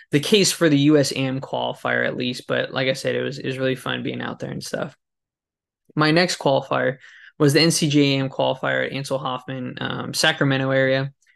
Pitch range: 130-145 Hz